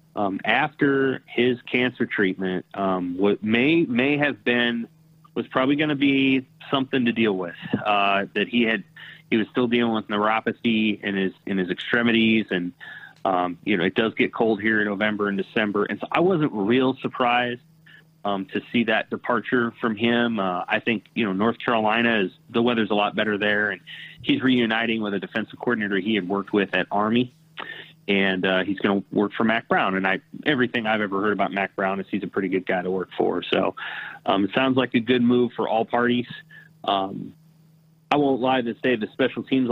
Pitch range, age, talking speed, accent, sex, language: 100-125 Hz, 30-49, 205 wpm, American, male, English